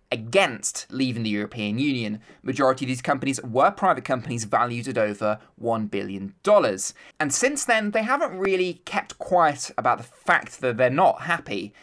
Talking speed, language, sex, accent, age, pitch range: 165 wpm, English, male, British, 20-39, 115-175 Hz